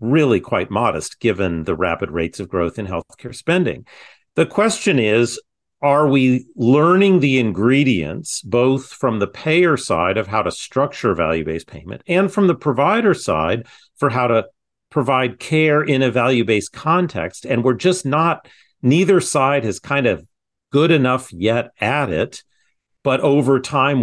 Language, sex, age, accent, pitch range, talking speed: English, male, 40-59, American, 105-145 Hz, 155 wpm